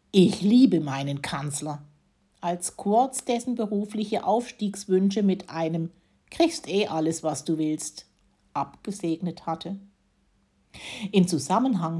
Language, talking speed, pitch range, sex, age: German, 105 wpm, 165-210 Hz, female, 60-79